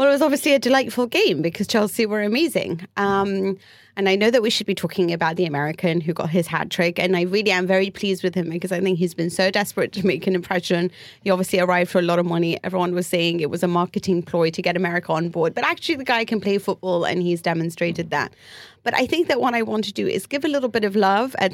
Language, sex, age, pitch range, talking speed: English, female, 30-49, 175-200 Hz, 265 wpm